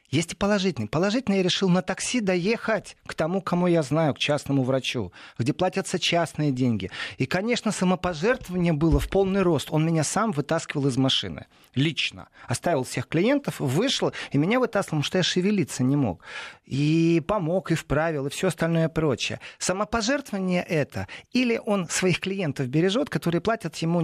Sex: male